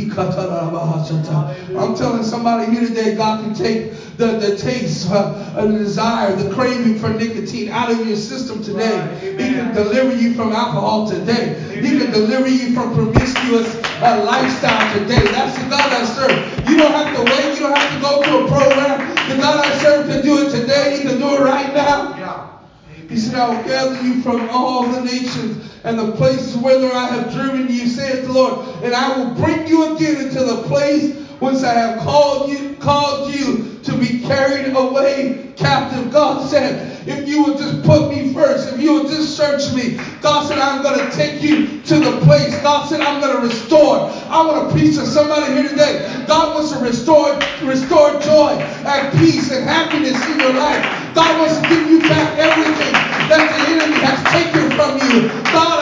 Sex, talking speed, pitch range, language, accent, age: male, 190 wpm, 235-295 Hz, English, American, 30-49